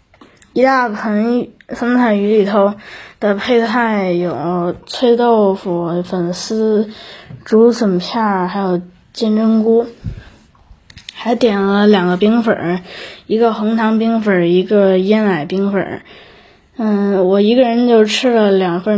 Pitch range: 185-225 Hz